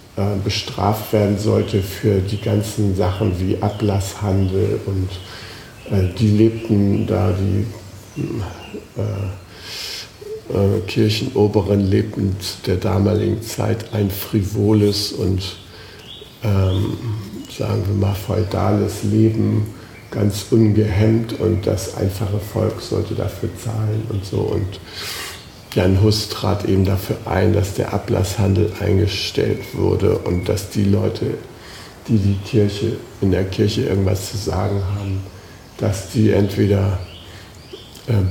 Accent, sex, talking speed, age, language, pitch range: German, male, 115 wpm, 60-79, German, 95-110 Hz